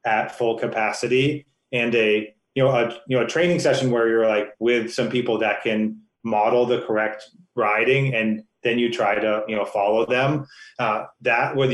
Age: 30-49